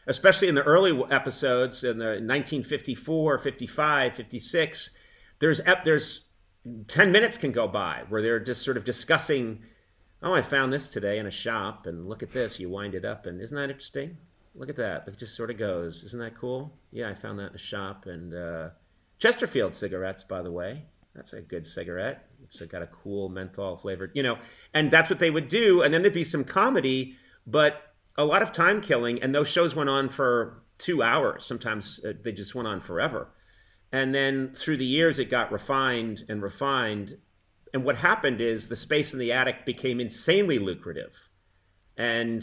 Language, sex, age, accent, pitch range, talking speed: English, male, 40-59, American, 100-135 Hz, 190 wpm